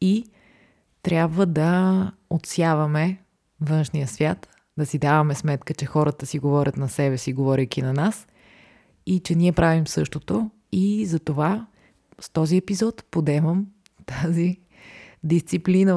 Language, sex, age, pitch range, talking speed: Bulgarian, female, 20-39, 145-180 Hz, 125 wpm